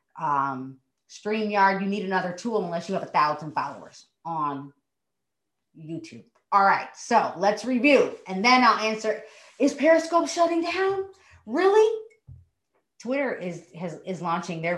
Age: 40-59